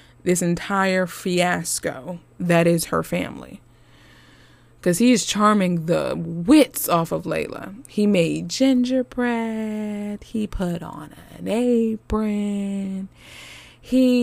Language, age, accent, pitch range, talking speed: English, 20-39, American, 120-205 Hz, 105 wpm